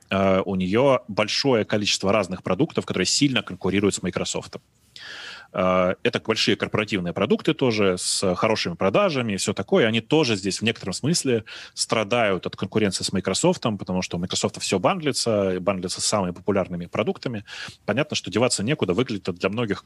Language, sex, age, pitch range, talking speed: Russian, male, 30-49, 95-120 Hz, 165 wpm